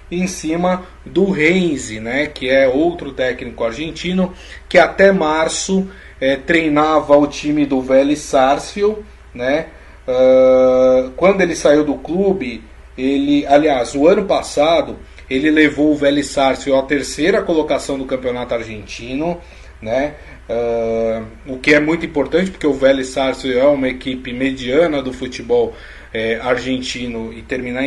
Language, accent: Portuguese, Brazilian